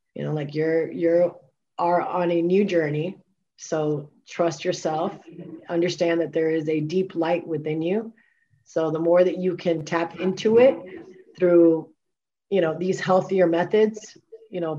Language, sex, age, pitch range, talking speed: English, female, 30-49, 160-185 Hz, 160 wpm